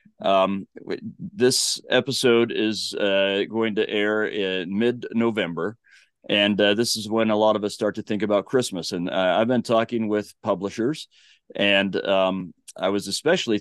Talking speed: 165 wpm